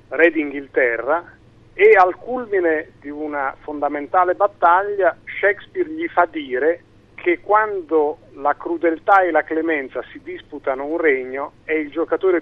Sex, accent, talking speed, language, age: male, native, 130 wpm, Italian, 40-59